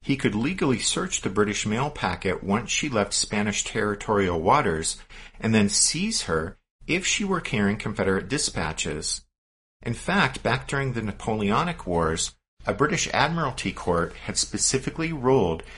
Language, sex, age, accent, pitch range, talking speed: English, male, 50-69, American, 85-120 Hz, 145 wpm